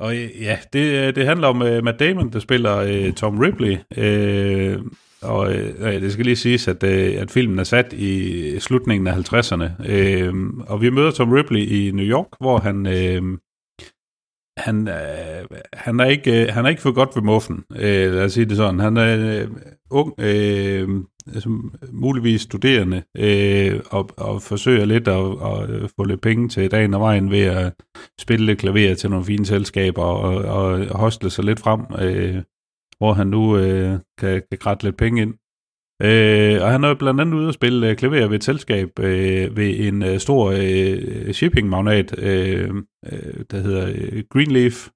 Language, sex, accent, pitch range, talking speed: Danish, male, native, 95-120 Hz, 180 wpm